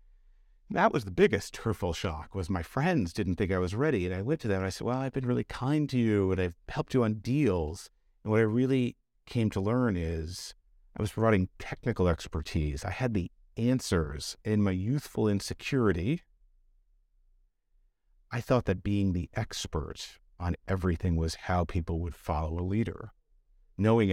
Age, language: 50-69, English